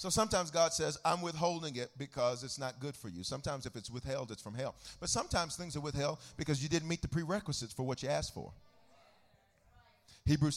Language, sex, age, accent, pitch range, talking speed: English, male, 40-59, American, 150-200 Hz, 210 wpm